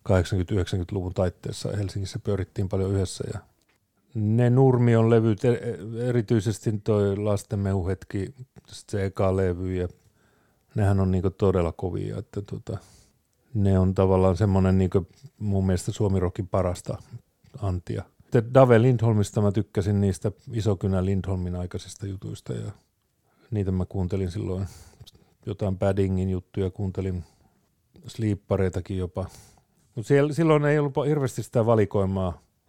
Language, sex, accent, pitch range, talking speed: Finnish, male, native, 95-115 Hz, 110 wpm